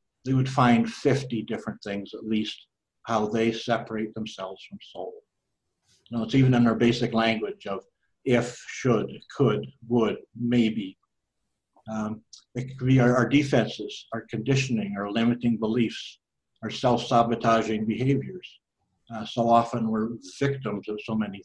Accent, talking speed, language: American, 135 wpm, English